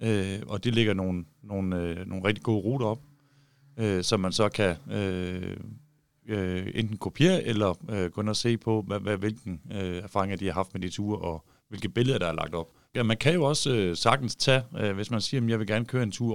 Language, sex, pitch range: Danish, male, 95-120 Hz